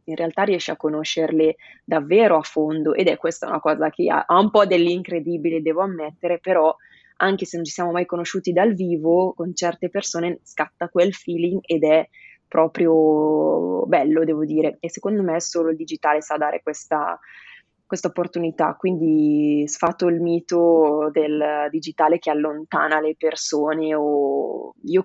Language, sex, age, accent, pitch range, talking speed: Italian, female, 20-39, native, 155-180 Hz, 155 wpm